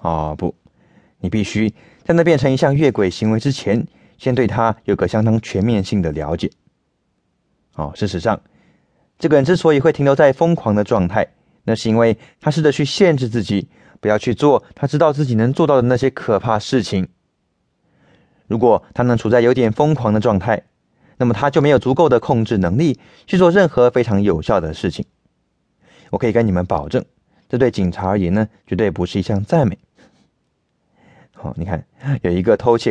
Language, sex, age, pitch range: English, male, 20-39, 100-145 Hz